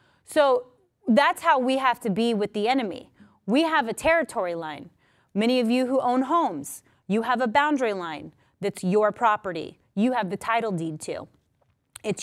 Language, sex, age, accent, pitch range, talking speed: English, female, 30-49, American, 205-275 Hz, 175 wpm